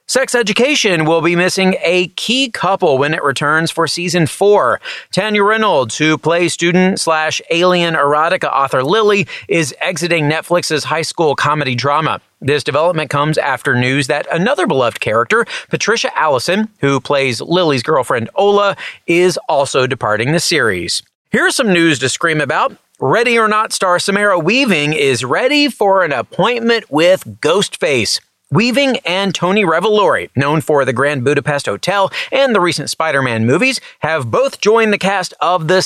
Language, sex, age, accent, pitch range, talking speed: English, male, 40-59, American, 150-200 Hz, 150 wpm